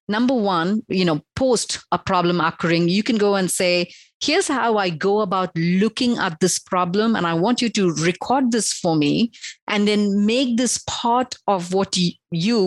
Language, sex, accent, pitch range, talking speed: English, female, Indian, 170-210 Hz, 185 wpm